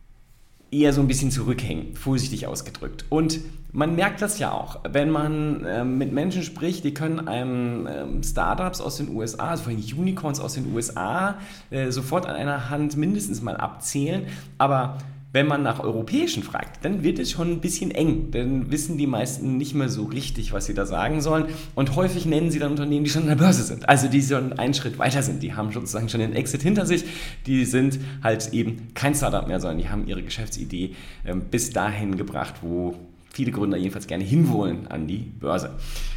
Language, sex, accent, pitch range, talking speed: German, male, German, 120-160 Hz, 190 wpm